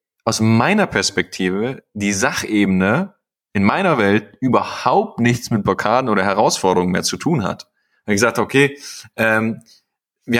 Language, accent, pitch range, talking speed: German, German, 95-120 Hz, 140 wpm